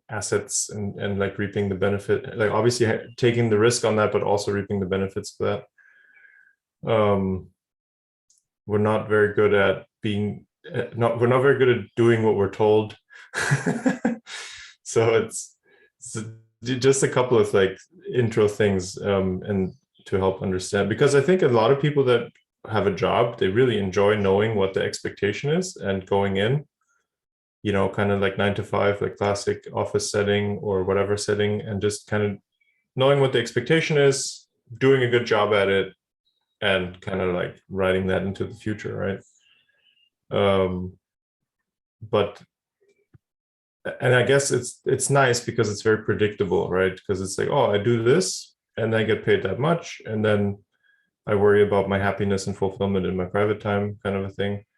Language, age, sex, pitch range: Chinese, 20-39, male, 100-120 Hz